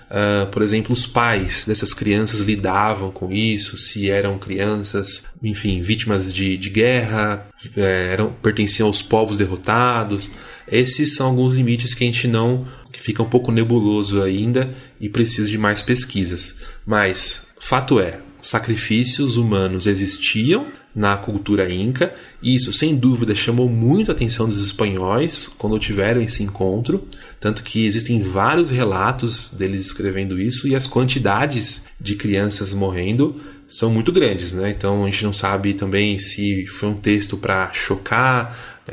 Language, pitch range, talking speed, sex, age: Portuguese, 100-125 Hz, 145 wpm, male, 20-39